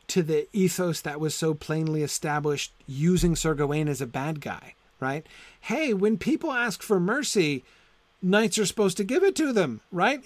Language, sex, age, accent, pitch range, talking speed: English, male, 40-59, American, 125-185 Hz, 180 wpm